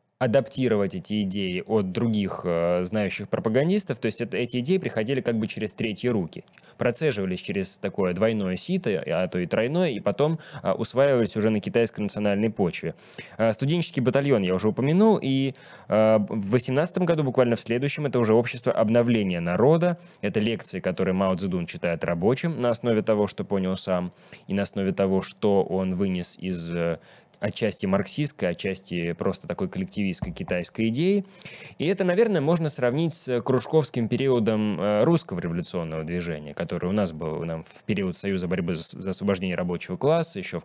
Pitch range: 95-140 Hz